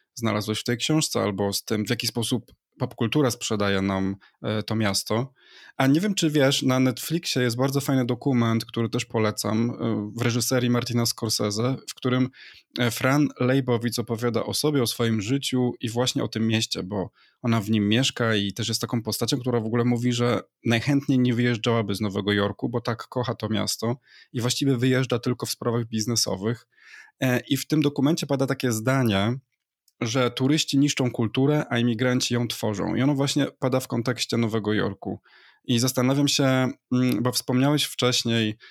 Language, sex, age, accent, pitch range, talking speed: Polish, male, 20-39, native, 115-130 Hz, 170 wpm